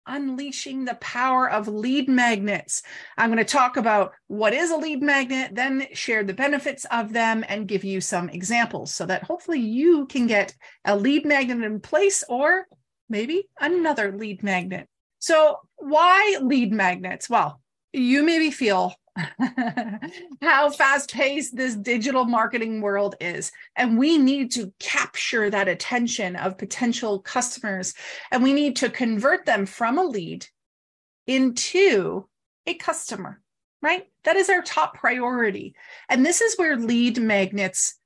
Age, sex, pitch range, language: 30-49, female, 205-280 Hz, English